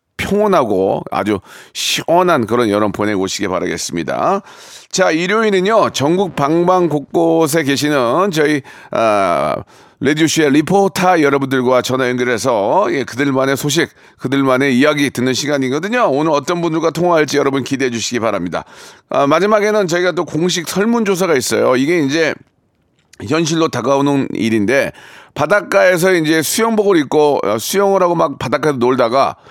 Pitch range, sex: 135-190 Hz, male